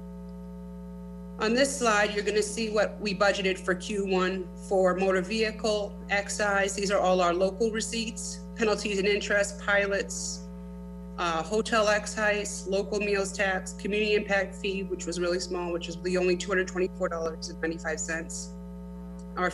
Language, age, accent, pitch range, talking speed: English, 30-49, American, 175-205 Hz, 140 wpm